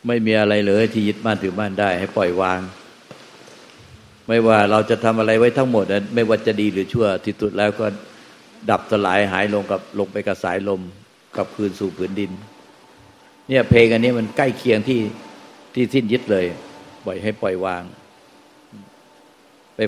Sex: male